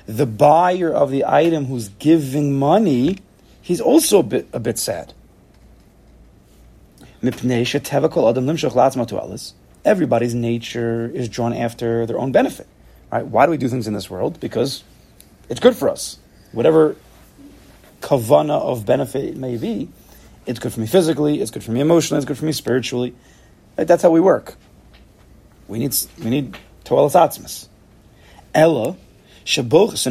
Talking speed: 140 wpm